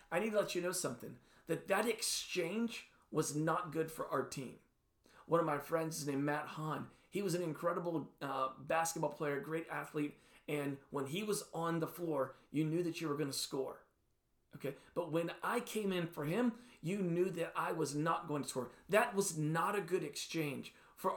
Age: 40-59